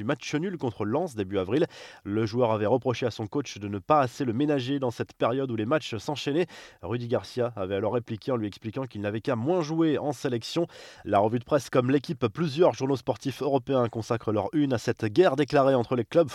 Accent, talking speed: French, 225 wpm